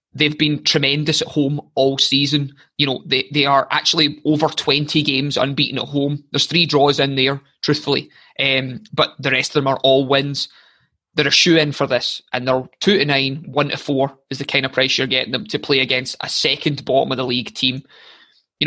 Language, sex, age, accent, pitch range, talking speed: English, male, 20-39, British, 130-150 Hz, 215 wpm